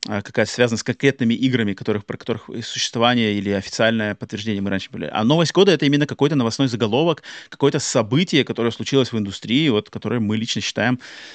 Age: 30-49